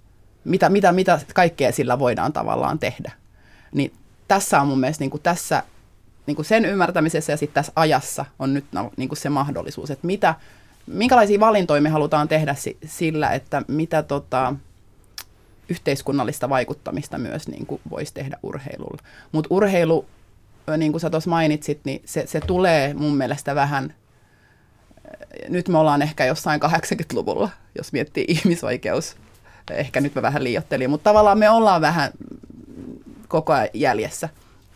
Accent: native